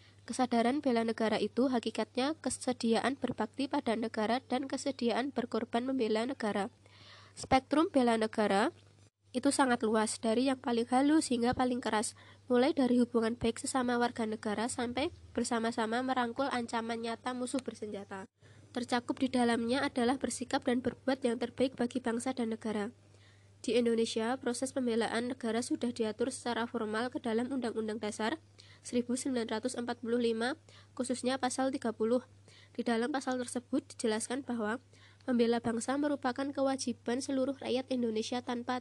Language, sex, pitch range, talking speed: Indonesian, female, 225-260 Hz, 130 wpm